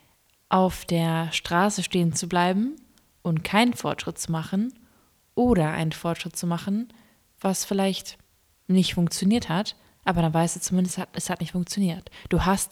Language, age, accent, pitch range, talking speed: German, 20-39, German, 170-200 Hz, 150 wpm